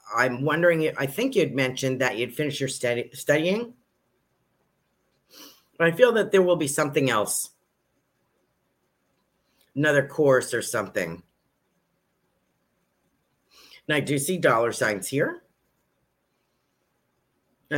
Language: English